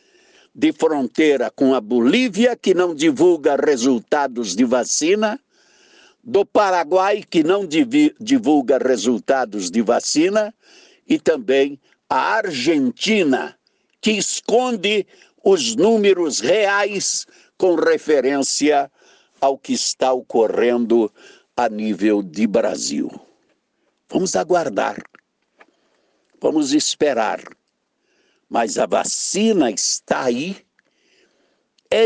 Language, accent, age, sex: Portuguese, Brazilian, 60-79, male